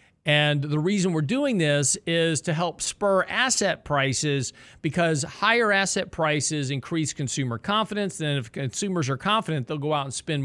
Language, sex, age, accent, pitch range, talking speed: English, male, 40-59, American, 125-165 Hz, 165 wpm